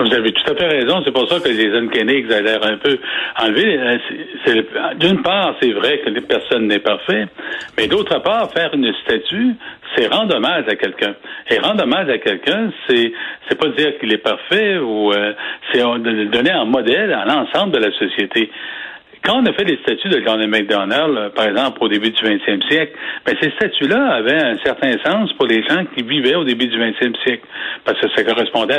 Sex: male